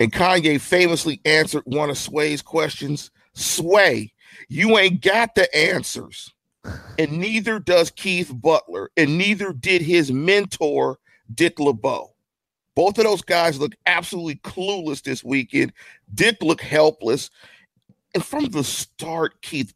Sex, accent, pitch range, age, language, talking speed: male, American, 135-180 Hz, 40-59, English, 130 wpm